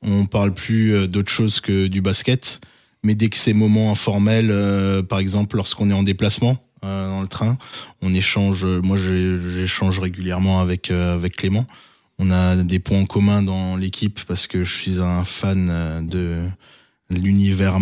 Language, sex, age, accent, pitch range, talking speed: French, male, 20-39, French, 95-110 Hz, 150 wpm